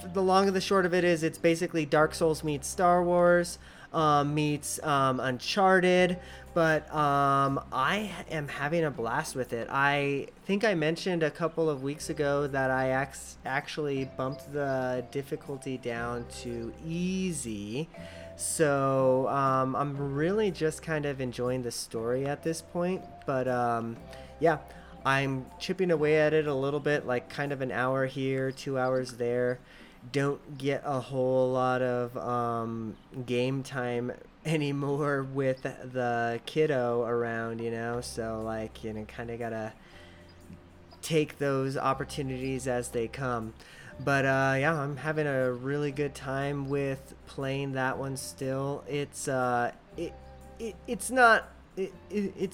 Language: English